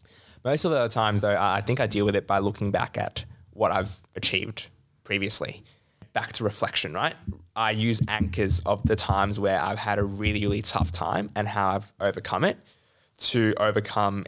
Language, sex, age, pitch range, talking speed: English, male, 20-39, 100-110 Hz, 190 wpm